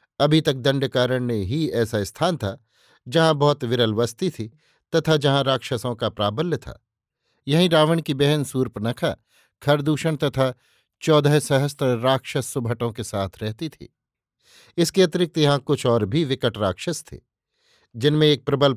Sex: male